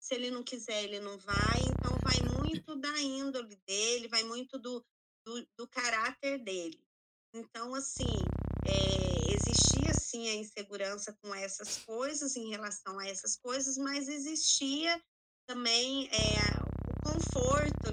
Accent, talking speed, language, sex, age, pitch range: Brazilian, 125 wpm, Portuguese, female, 20-39, 205-270 Hz